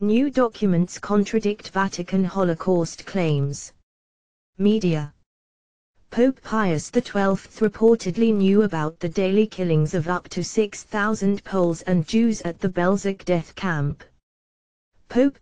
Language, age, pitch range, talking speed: English, 20-39, 165-210 Hz, 115 wpm